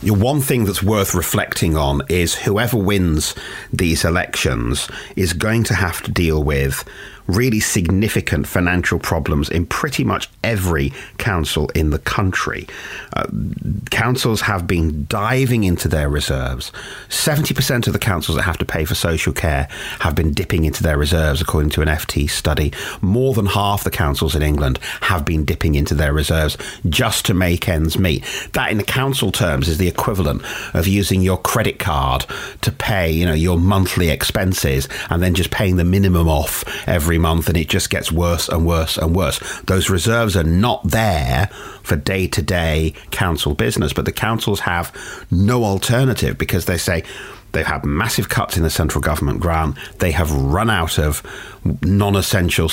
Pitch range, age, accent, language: 80-100 Hz, 40-59, British, English